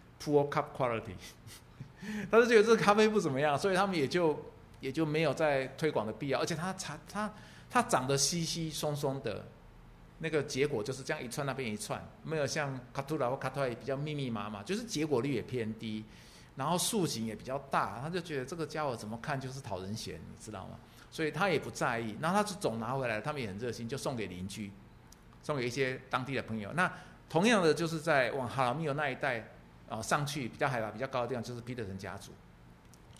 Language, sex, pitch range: Chinese, male, 110-150 Hz